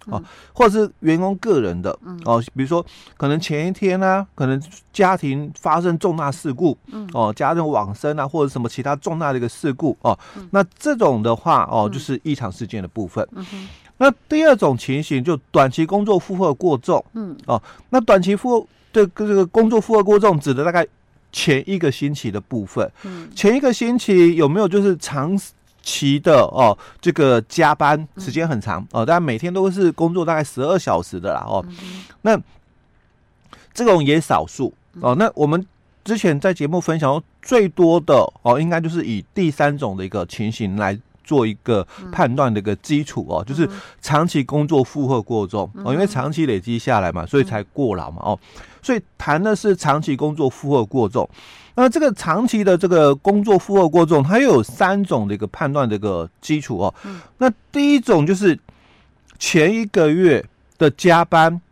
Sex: male